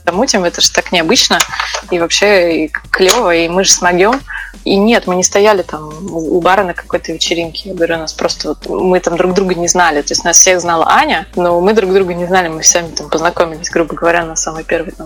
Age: 20-39